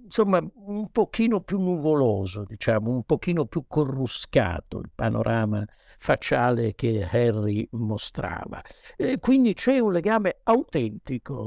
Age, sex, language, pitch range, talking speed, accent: 60-79, male, Italian, 115-170 Hz, 115 wpm, native